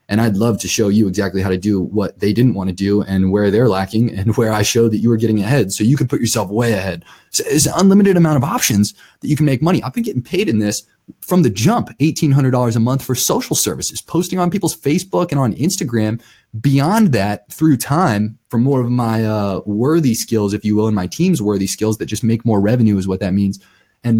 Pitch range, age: 110-150 Hz, 20-39